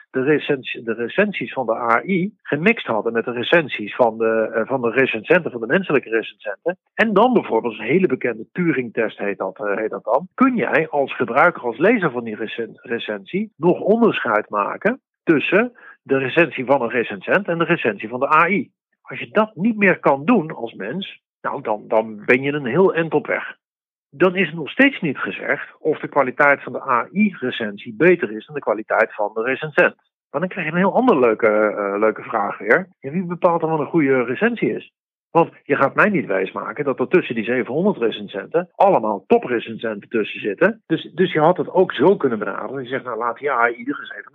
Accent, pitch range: Dutch, 120-185 Hz